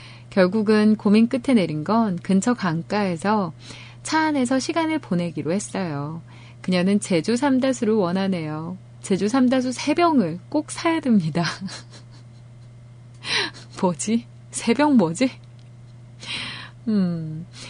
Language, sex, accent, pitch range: Korean, female, native, 145-230 Hz